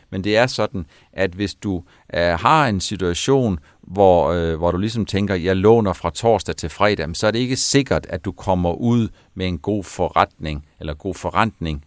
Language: Danish